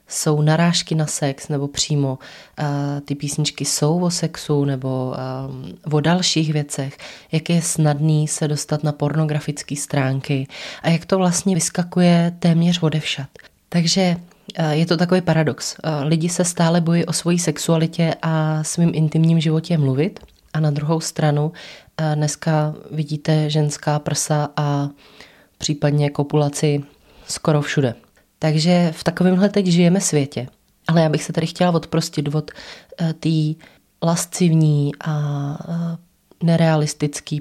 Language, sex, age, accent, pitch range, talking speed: Czech, female, 20-39, native, 150-170 Hz, 125 wpm